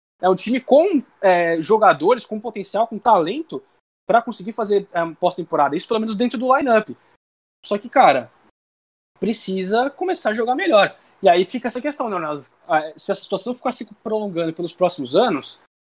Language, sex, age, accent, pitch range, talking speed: Portuguese, male, 20-39, Brazilian, 180-230 Hz, 170 wpm